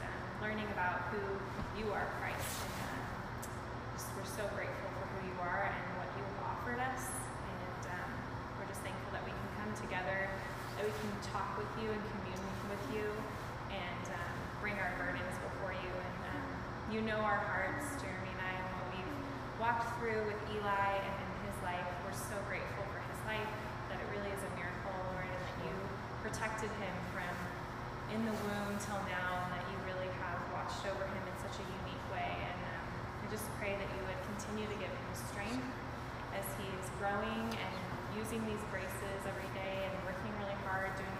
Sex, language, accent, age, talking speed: female, English, American, 10-29, 185 wpm